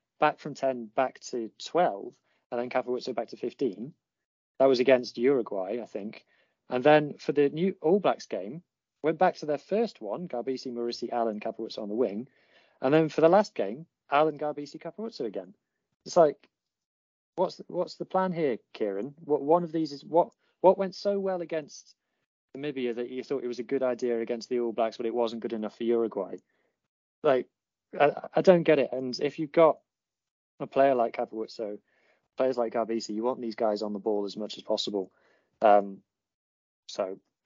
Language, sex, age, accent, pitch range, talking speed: English, male, 30-49, British, 115-155 Hz, 190 wpm